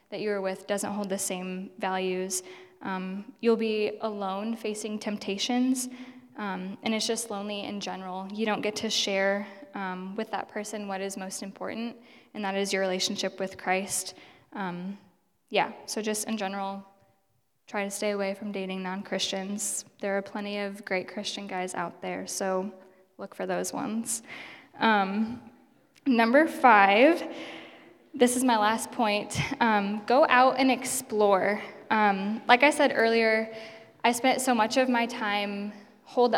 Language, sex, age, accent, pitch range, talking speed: English, female, 10-29, American, 195-230 Hz, 155 wpm